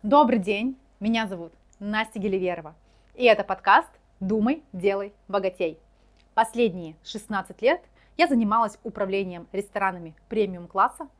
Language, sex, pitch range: Russian, female, 190-250 Hz